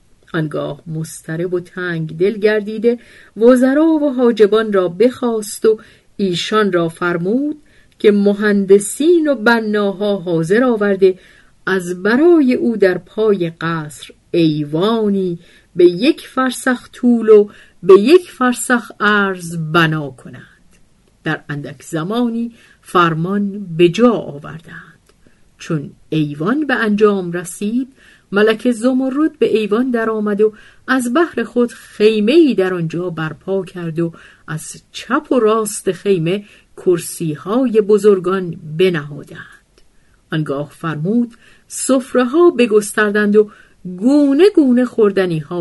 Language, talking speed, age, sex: Persian, 105 wpm, 50-69, female